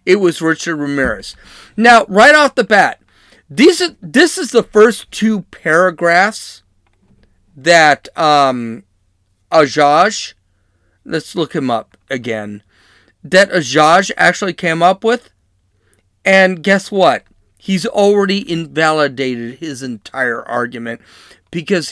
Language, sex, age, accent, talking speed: English, male, 40-59, American, 110 wpm